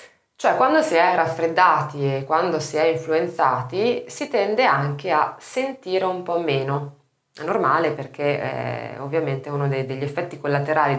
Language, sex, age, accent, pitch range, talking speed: Italian, female, 20-39, native, 140-185 Hz, 150 wpm